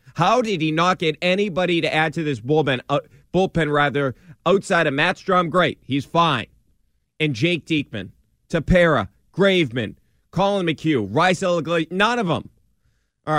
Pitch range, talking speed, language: 145-205 Hz, 150 wpm, English